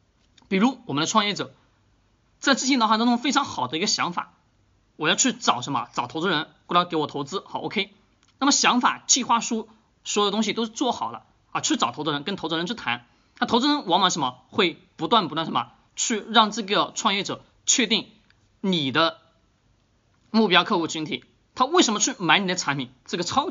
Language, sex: Chinese, male